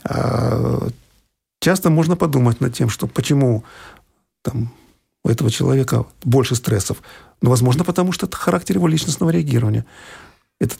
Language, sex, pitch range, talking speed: Russian, male, 120-160 Hz, 120 wpm